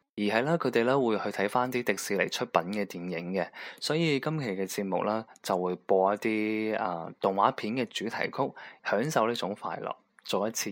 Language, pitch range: Chinese, 95-115 Hz